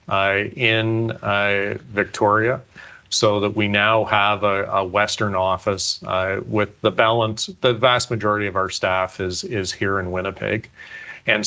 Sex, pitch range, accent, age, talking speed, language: male, 100-110 Hz, American, 40-59, 150 wpm, English